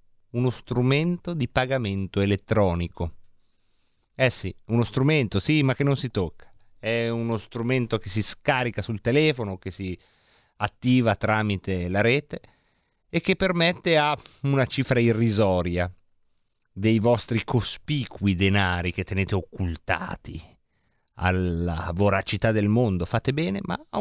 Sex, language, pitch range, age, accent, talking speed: male, Italian, 100-135 Hz, 30-49, native, 125 wpm